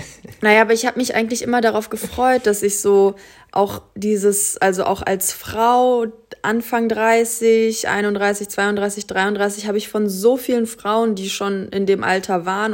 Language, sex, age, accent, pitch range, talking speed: German, female, 20-39, German, 215-245 Hz, 165 wpm